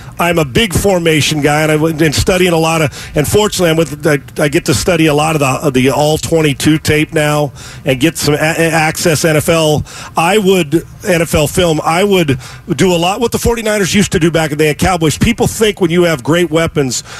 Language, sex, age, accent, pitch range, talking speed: English, male, 40-59, American, 150-185 Hz, 225 wpm